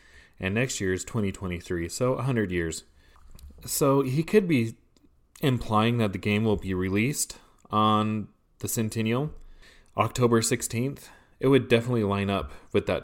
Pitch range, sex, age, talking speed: 95-120 Hz, male, 30-49, 145 wpm